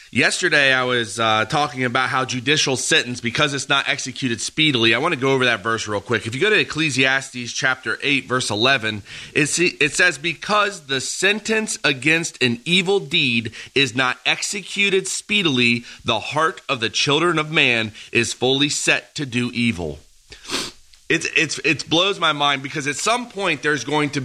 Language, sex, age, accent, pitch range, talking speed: English, male, 30-49, American, 120-170 Hz, 180 wpm